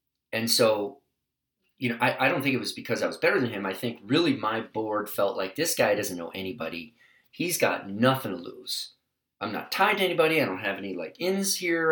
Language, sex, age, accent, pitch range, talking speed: English, male, 30-49, American, 100-130 Hz, 225 wpm